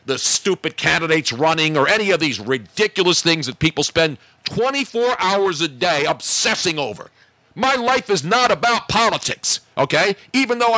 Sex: male